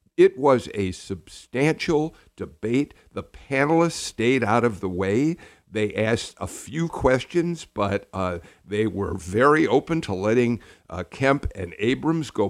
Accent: American